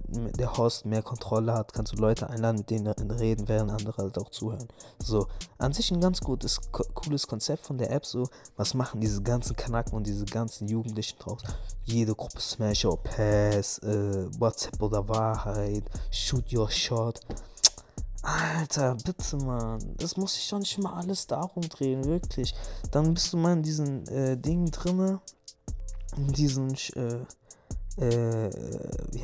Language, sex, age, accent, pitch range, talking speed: German, male, 20-39, German, 110-165 Hz, 160 wpm